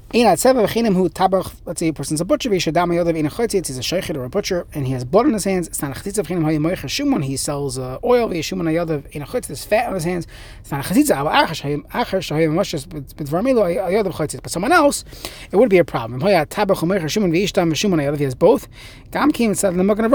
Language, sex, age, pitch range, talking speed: English, male, 30-49, 145-195 Hz, 115 wpm